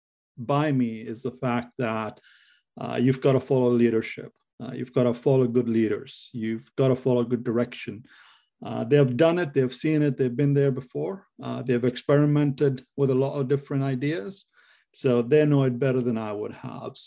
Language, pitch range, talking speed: English, 120-145 Hz, 195 wpm